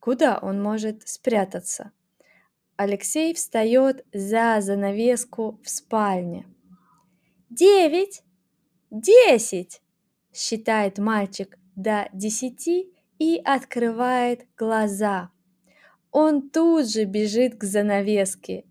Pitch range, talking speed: 200-295 Hz, 80 wpm